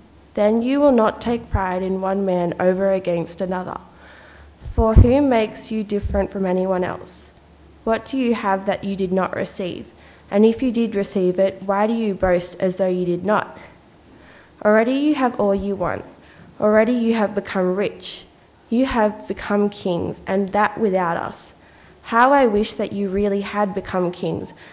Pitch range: 185-220 Hz